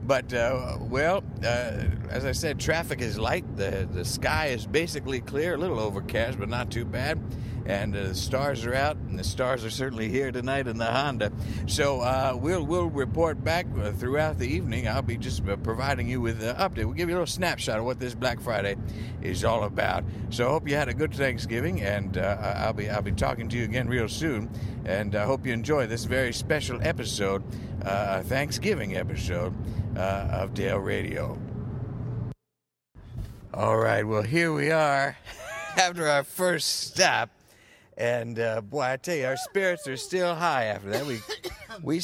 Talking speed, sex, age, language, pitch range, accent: 185 wpm, male, 60-79, English, 110-140 Hz, American